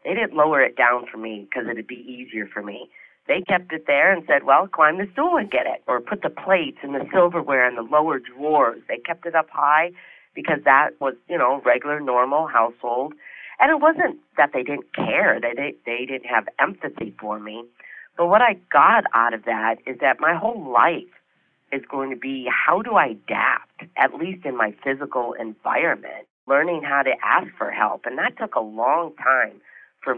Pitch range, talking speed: 115-150 Hz, 210 wpm